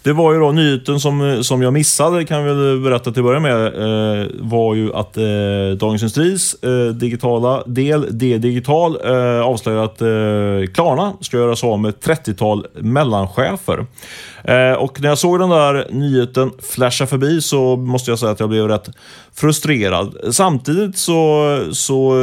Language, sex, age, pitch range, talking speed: Swedish, male, 30-49, 110-135 Hz, 170 wpm